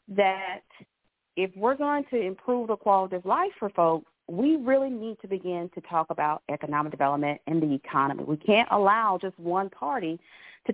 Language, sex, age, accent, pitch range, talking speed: English, female, 40-59, American, 180-250 Hz, 180 wpm